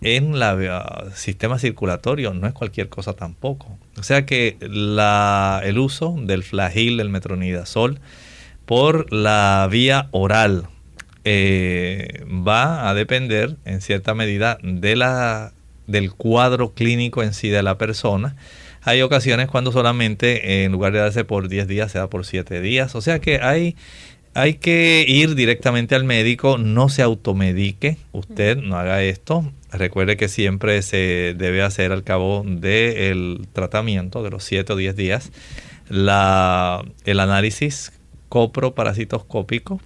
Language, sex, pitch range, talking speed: Spanish, male, 95-125 Hz, 145 wpm